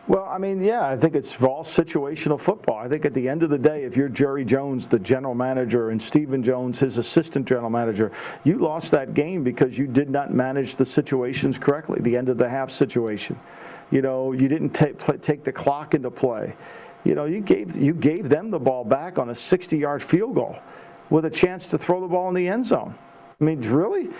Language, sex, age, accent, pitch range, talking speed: English, male, 50-69, American, 135-170 Hz, 225 wpm